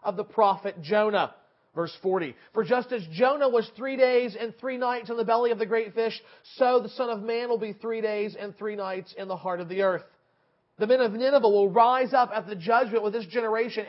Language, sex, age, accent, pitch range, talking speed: English, male, 40-59, American, 190-260 Hz, 235 wpm